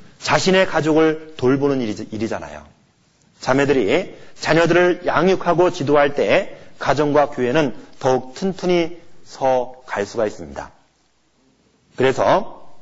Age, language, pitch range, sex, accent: 40-59, Korean, 125-160 Hz, male, native